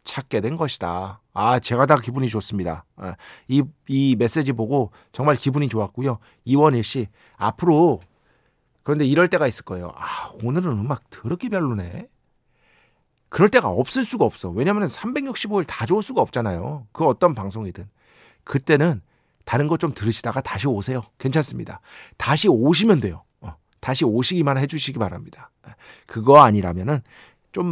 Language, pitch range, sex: Korean, 110-155 Hz, male